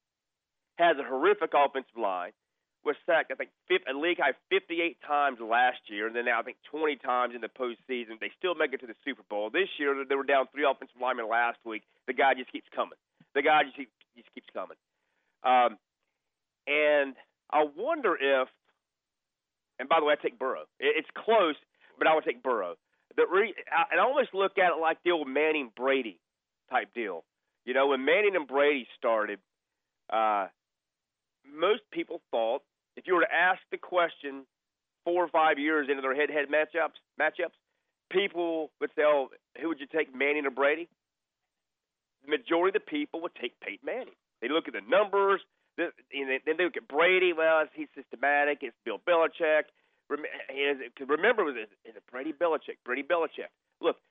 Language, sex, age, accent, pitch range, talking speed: English, male, 40-59, American, 135-170 Hz, 180 wpm